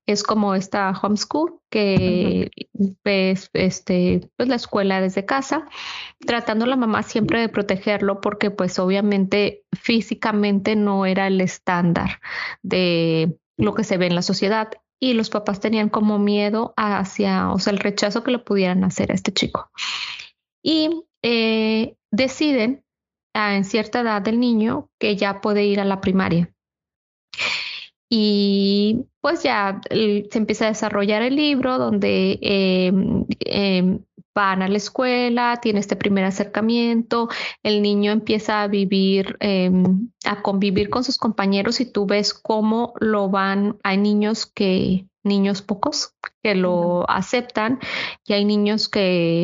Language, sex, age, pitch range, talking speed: Spanish, female, 20-39, 195-230 Hz, 140 wpm